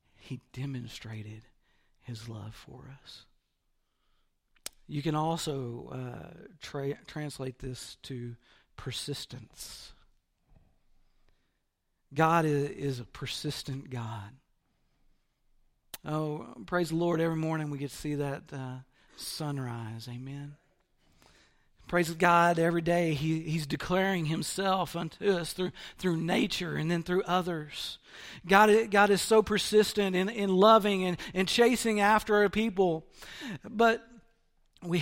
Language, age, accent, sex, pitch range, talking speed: English, 50-69, American, male, 135-185 Hz, 115 wpm